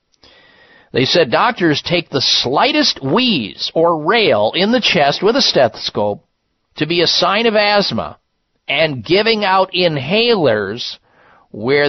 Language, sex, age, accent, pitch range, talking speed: English, male, 50-69, American, 140-200 Hz, 130 wpm